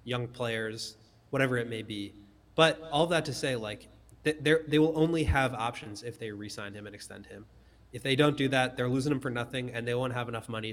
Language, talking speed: English, 230 wpm